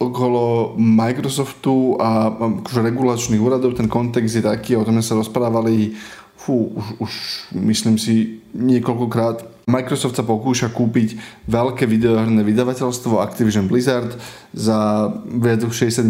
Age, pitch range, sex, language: 20-39, 115-125 Hz, male, Slovak